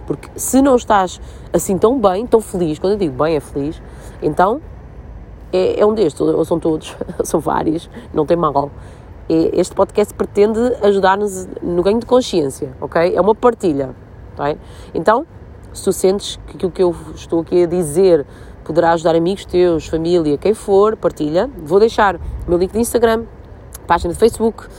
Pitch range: 155-200 Hz